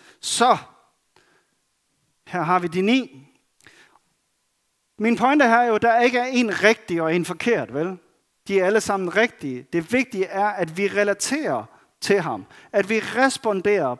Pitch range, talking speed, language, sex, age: 170-230 Hz, 150 wpm, Danish, male, 40-59